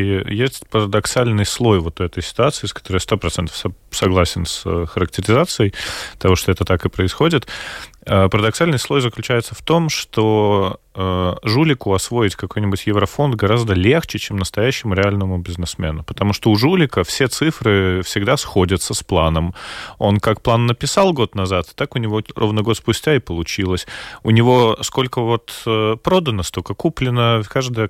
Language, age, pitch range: Russian, 30-49, 95-120 Hz